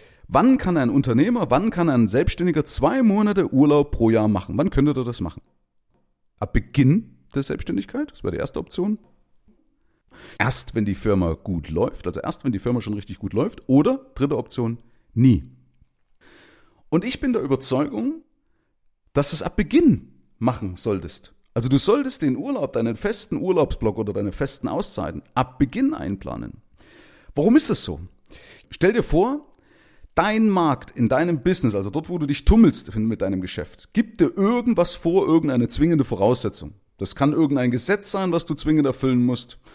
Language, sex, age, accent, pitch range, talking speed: German, male, 40-59, German, 120-180 Hz, 170 wpm